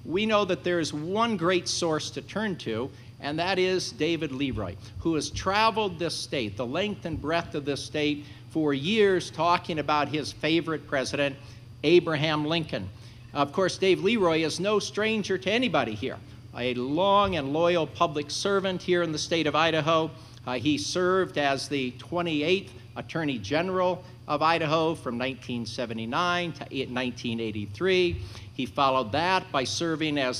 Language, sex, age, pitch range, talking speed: English, male, 50-69, 125-175 Hz, 155 wpm